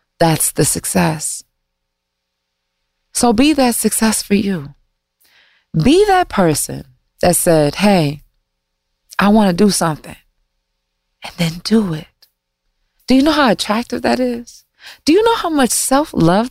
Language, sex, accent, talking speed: English, female, American, 135 wpm